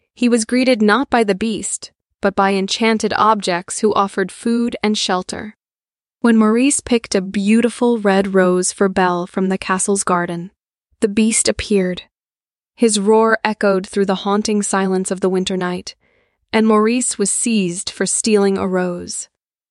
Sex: female